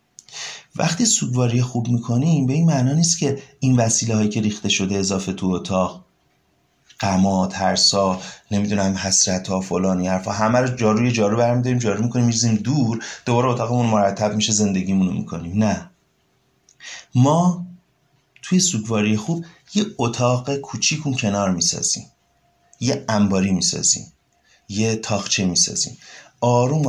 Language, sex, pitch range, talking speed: Persian, male, 100-135 Hz, 125 wpm